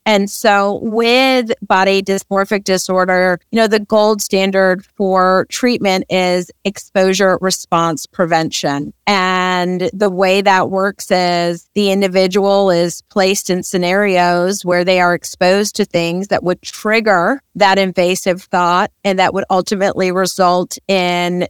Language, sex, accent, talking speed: English, female, American, 130 wpm